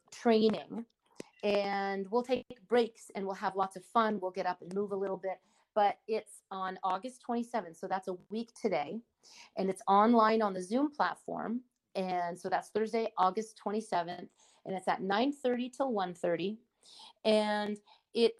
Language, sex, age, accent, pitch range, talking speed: English, female, 40-59, American, 180-220 Hz, 175 wpm